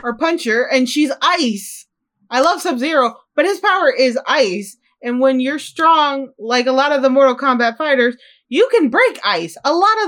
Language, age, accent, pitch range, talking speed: English, 20-39, American, 200-285 Hz, 195 wpm